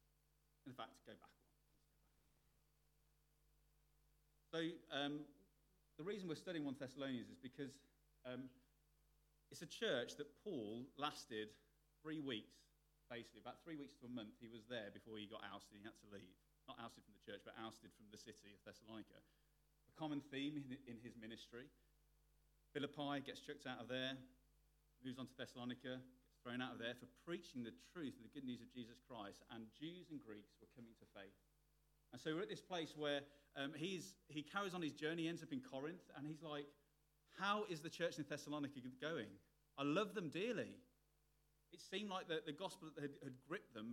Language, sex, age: English, male, 40-59